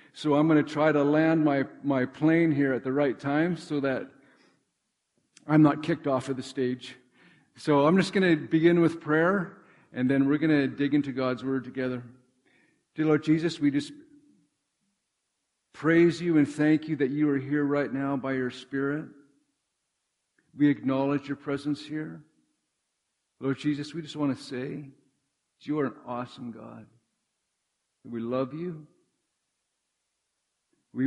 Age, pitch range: 50-69, 130-150 Hz